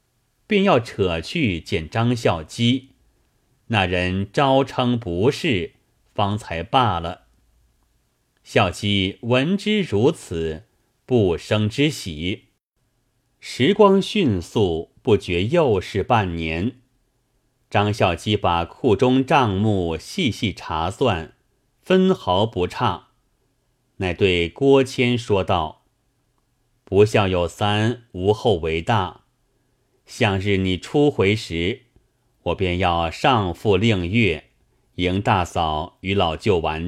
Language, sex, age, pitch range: Chinese, male, 30-49, 95-125 Hz